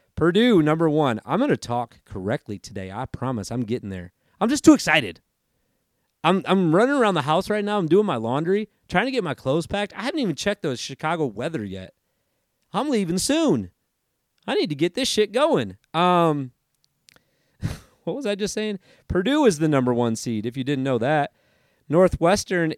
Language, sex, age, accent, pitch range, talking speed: English, male, 30-49, American, 125-175 Hz, 190 wpm